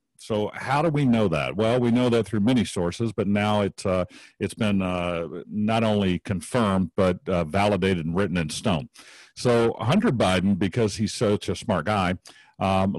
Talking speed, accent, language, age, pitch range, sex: 180 wpm, American, English, 50-69, 90-110 Hz, male